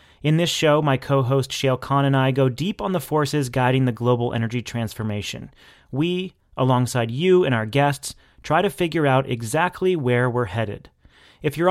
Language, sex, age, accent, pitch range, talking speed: English, male, 30-49, American, 125-150 Hz, 180 wpm